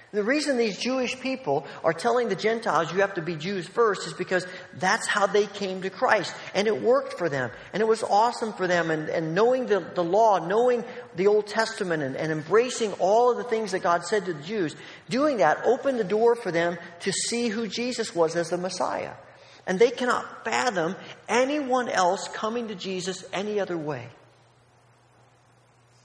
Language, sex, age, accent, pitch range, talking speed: English, male, 50-69, American, 130-210 Hz, 195 wpm